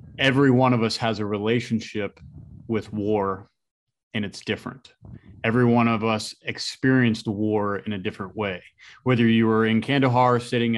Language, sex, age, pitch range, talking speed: English, male, 30-49, 110-125 Hz, 155 wpm